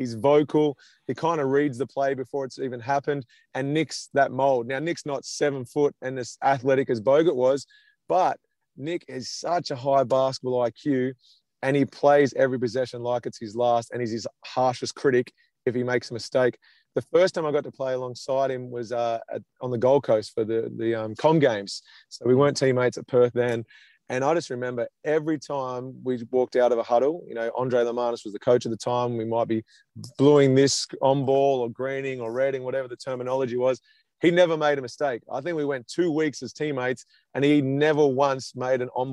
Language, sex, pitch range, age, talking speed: English, male, 120-140 Hz, 30-49, 215 wpm